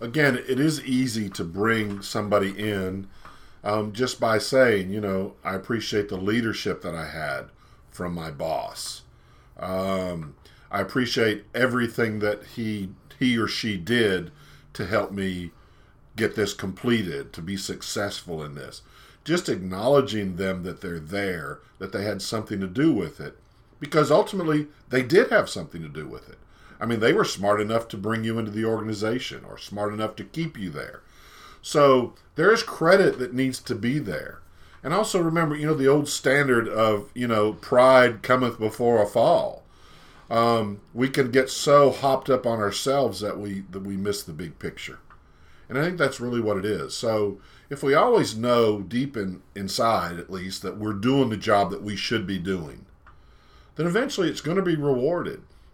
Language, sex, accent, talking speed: English, male, American, 175 wpm